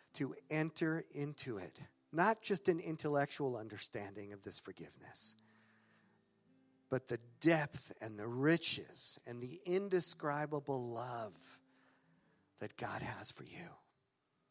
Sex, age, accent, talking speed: male, 50-69, American, 110 wpm